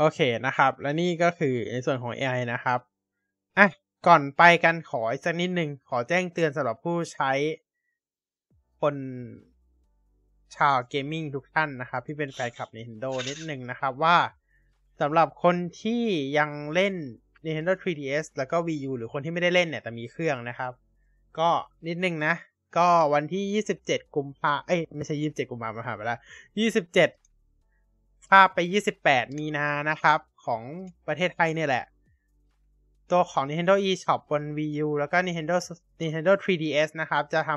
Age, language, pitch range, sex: 20-39, Thai, 130-175 Hz, male